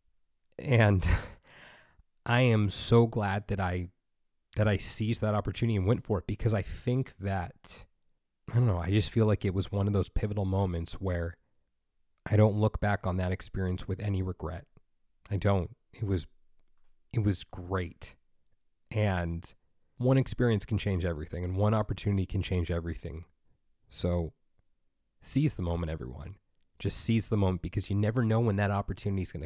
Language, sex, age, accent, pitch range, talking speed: English, male, 30-49, American, 90-105 Hz, 165 wpm